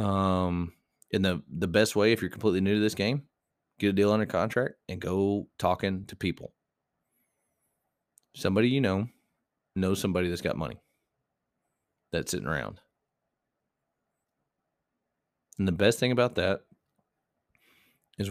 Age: 30-49